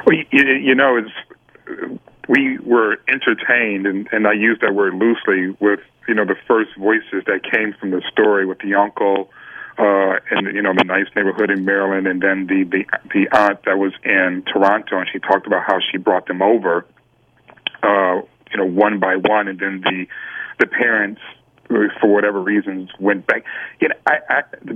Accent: American